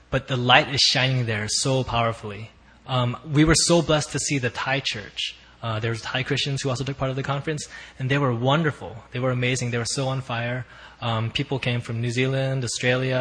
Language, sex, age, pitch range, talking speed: English, male, 20-39, 115-135 Hz, 225 wpm